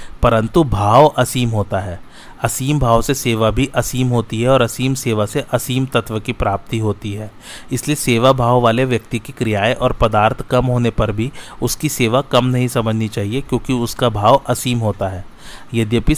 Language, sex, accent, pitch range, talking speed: Hindi, male, native, 110-125 Hz, 185 wpm